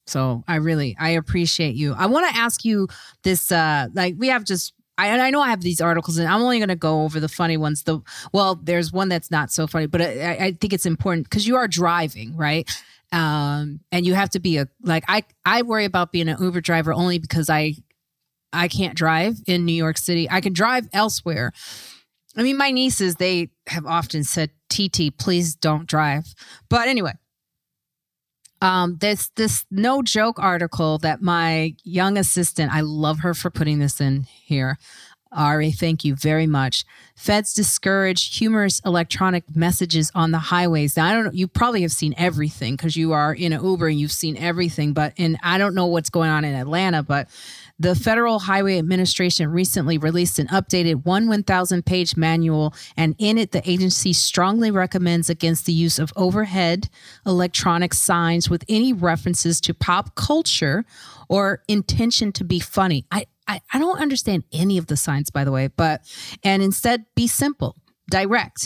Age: 30-49